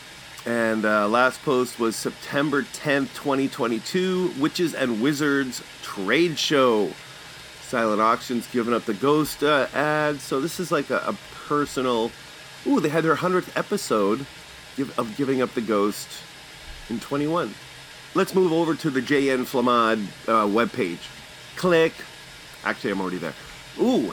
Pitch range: 120-160 Hz